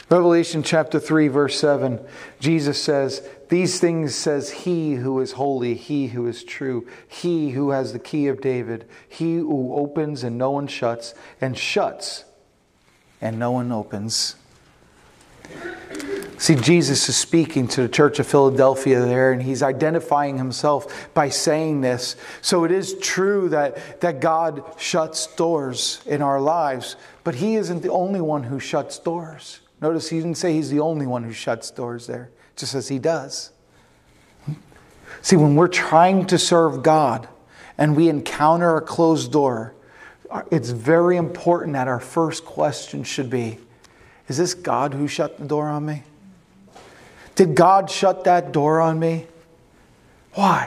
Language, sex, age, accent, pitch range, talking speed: English, male, 40-59, American, 130-165 Hz, 155 wpm